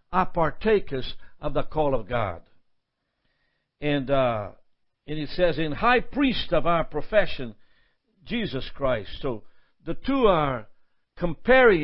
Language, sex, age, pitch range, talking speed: English, male, 60-79, 145-200 Hz, 120 wpm